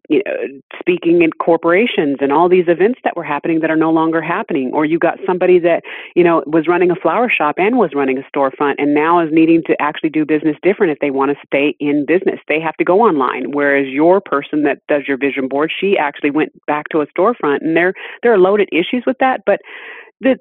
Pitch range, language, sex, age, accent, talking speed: 150-225 Hz, English, female, 30-49, American, 235 wpm